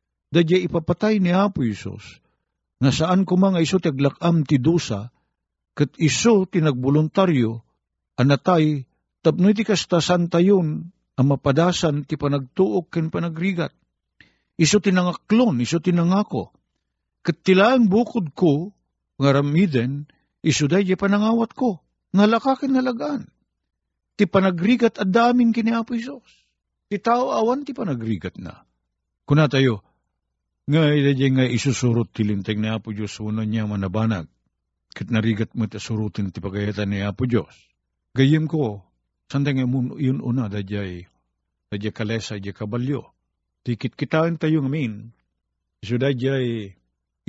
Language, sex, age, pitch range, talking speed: Filipino, male, 50-69, 105-170 Hz, 120 wpm